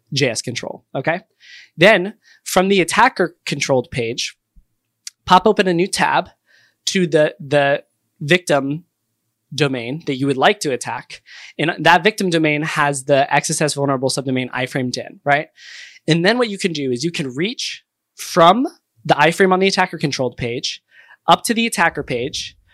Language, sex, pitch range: English, male, 130-170 Hz